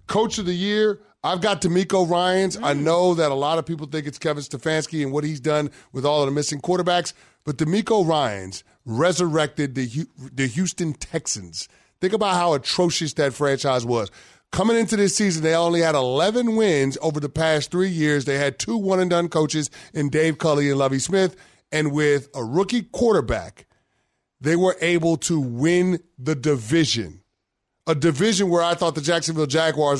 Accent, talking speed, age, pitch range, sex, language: American, 180 wpm, 30-49, 140-180 Hz, male, English